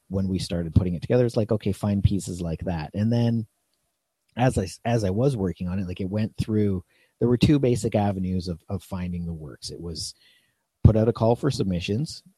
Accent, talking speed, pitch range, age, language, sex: American, 220 wpm, 90-110 Hz, 30-49, English, male